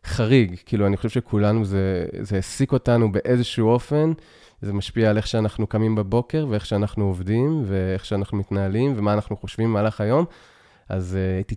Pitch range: 100-125 Hz